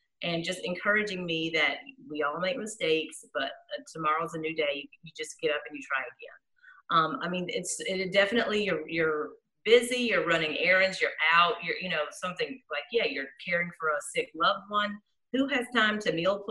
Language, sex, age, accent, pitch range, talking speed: English, female, 30-49, American, 160-230 Hz, 200 wpm